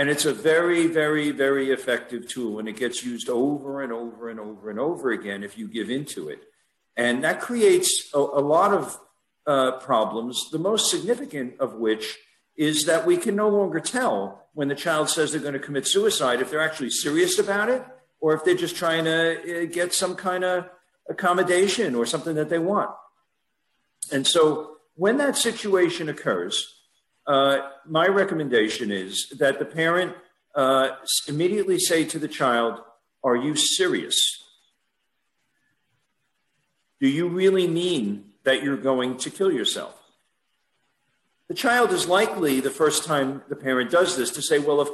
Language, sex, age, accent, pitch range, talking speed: English, male, 50-69, American, 135-200 Hz, 165 wpm